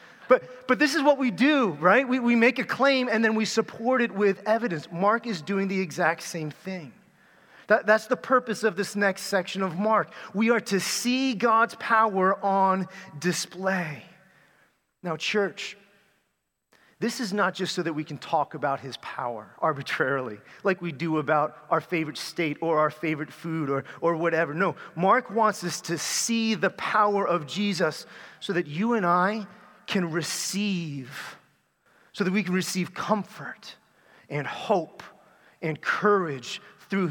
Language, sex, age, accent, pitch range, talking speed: English, male, 30-49, American, 160-210 Hz, 165 wpm